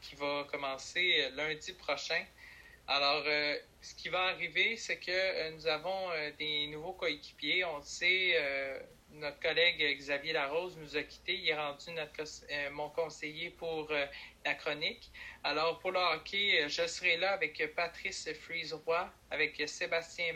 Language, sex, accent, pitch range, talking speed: French, male, Canadian, 150-175 Hz, 155 wpm